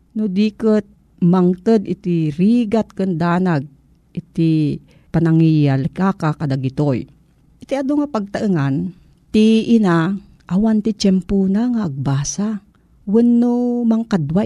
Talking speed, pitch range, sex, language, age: 100 wpm, 160-210 Hz, female, Filipino, 50-69